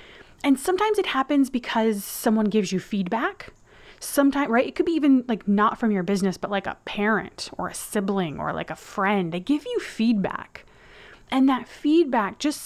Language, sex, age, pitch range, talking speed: English, female, 20-39, 200-280 Hz, 185 wpm